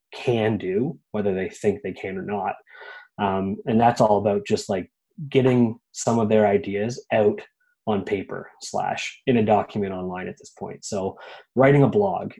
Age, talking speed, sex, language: 20-39, 175 wpm, male, English